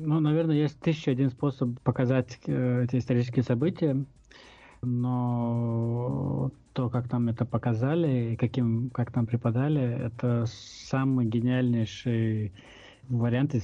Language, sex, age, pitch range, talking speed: Russian, male, 20-39, 120-140 Hz, 120 wpm